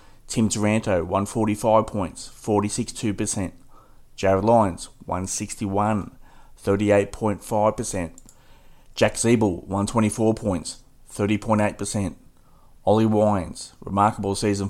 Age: 30-49